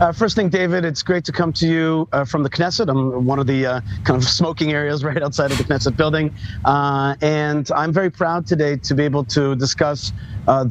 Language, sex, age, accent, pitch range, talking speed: English, male, 40-59, American, 135-170 Hz, 230 wpm